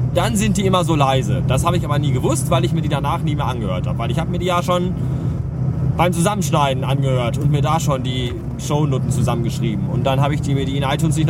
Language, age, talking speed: German, 20-39, 255 wpm